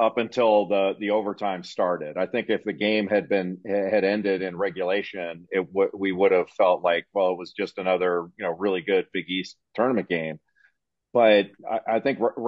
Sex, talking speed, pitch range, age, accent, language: male, 200 wpm, 95-120 Hz, 50-69, American, English